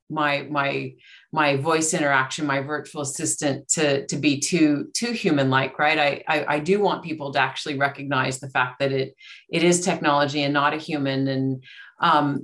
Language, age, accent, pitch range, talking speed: English, 30-49, American, 140-160 Hz, 180 wpm